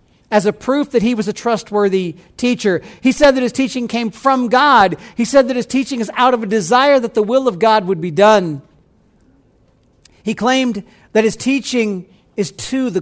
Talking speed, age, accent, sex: 200 wpm, 50-69, American, male